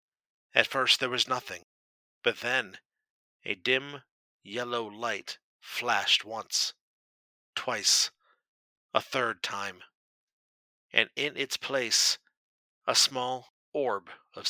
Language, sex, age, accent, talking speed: English, male, 50-69, American, 105 wpm